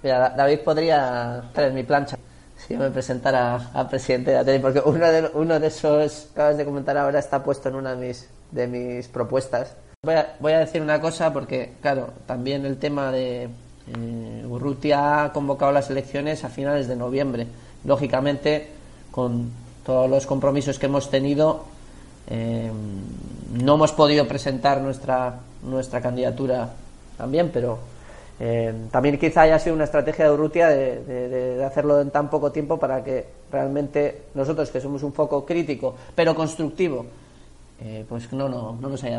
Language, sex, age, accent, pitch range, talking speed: Spanish, male, 20-39, Spanish, 125-150 Hz, 170 wpm